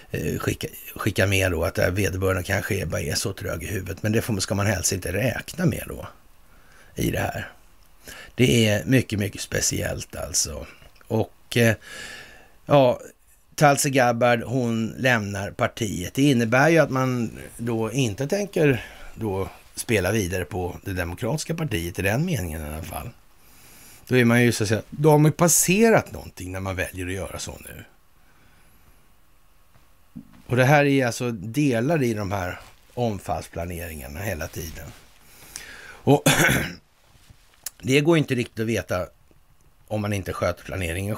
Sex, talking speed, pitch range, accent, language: male, 150 wpm, 90-125 Hz, native, Swedish